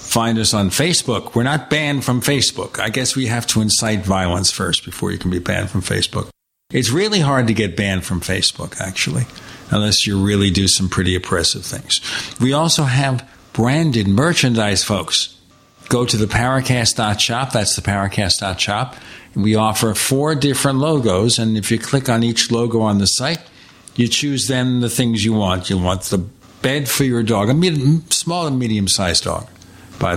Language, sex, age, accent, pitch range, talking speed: English, male, 60-79, American, 100-135 Hz, 180 wpm